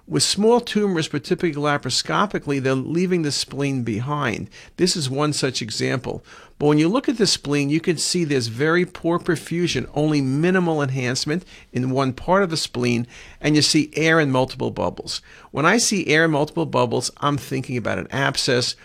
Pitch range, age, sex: 120-155 Hz, 50-69, male